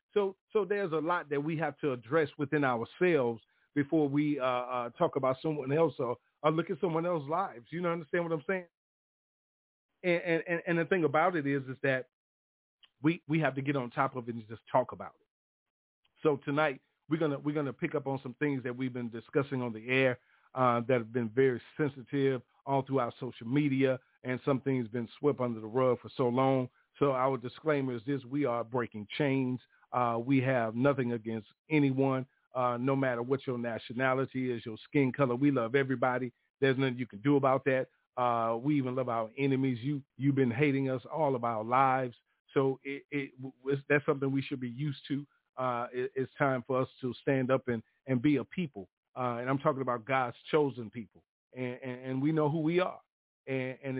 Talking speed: 210 wpm